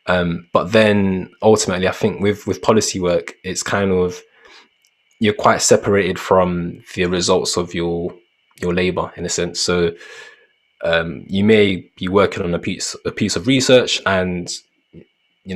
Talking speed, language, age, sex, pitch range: 160 wpm, English, 20-39, male, 90-100 Hz